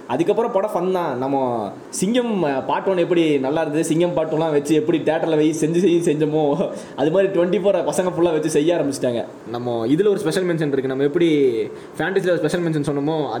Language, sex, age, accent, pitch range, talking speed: Tamil, male, 20-39, native, 140-175 Hz, 180 wpm